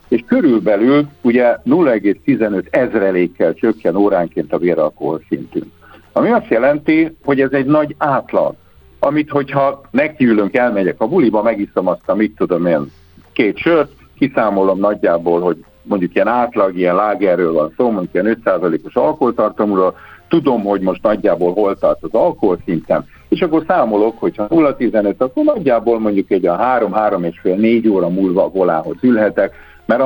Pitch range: 95-140 Hz